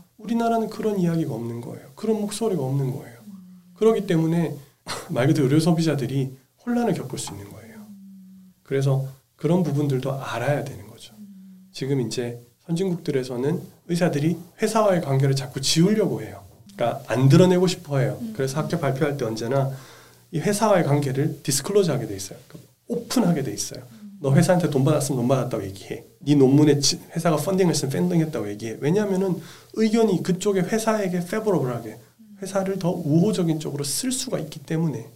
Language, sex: Korean, male